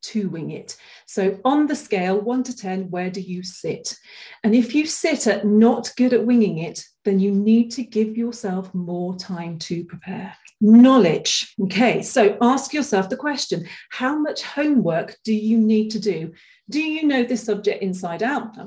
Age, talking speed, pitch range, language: 40-59, 185 wpm, 195-250 Hz, English